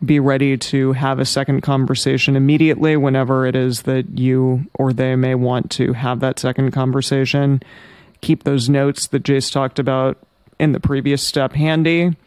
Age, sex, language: 30-49, male, English